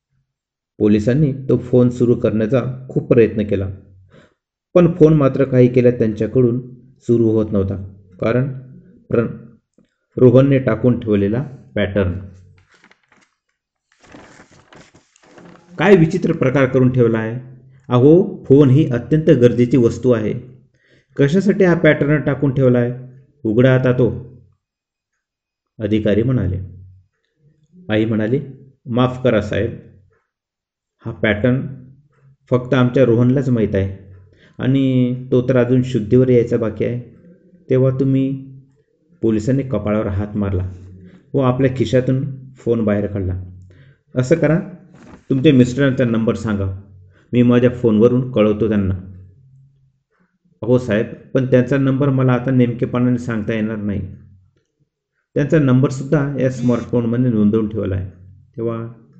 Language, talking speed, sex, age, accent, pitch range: Marathi, 100 wpm, male, 50-69, native, 110-135 Hz